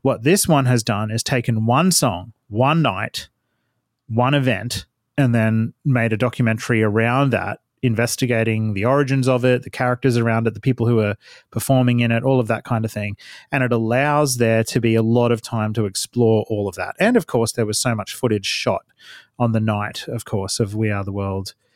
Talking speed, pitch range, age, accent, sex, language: 210 wpm, 115-135 Hz, 30-49, Australian, male, English